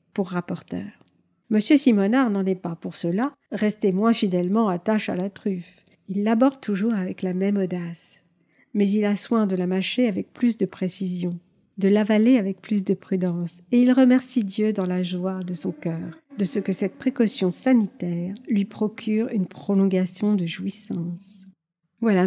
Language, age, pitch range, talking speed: French, 50-69, 185-230 Hz, 170 wpm